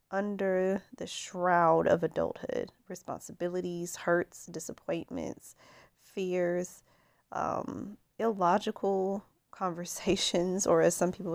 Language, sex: English, female